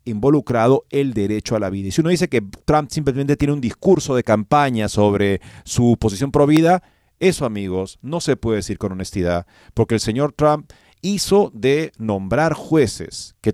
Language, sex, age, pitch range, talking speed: Spanish, male, 40-59, 105-145 Hz, 175 wpm